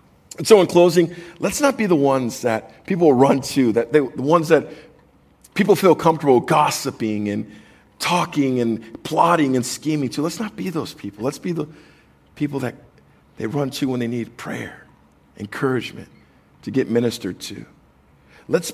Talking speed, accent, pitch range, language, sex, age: 165 wpm, American, 115-155 Hz, English, male, 50-69